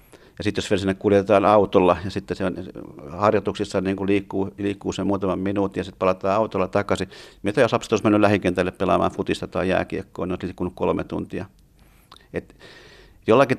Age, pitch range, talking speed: 50-69, 95-110 Hz, 170 wpm